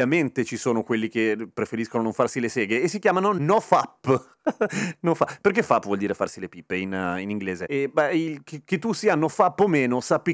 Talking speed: 230 wpm